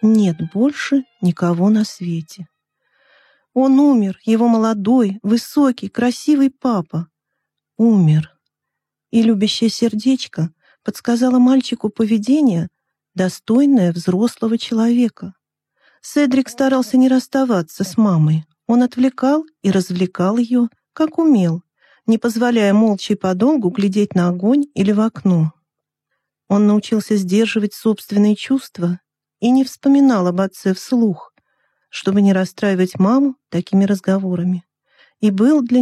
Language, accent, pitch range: Russian, native, 190-255 Hz